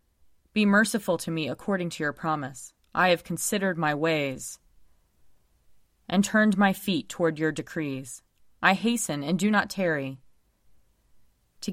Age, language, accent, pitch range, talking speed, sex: 20-39, English, American, 145-195 Hz, 140 wpm, female